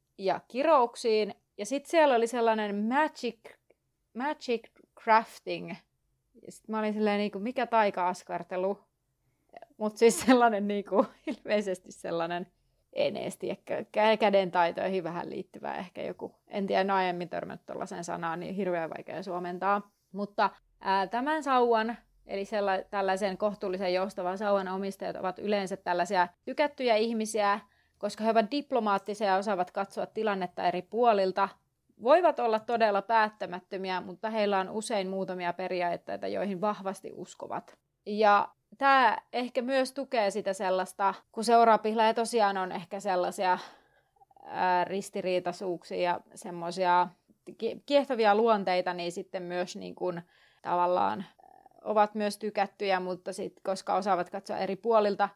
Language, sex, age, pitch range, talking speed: Finnish, female, 30-49, 185-225 Hz, 125 wpm